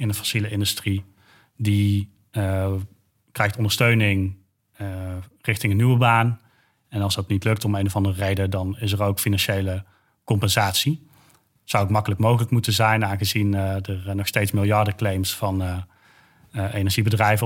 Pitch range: 100-115 Hz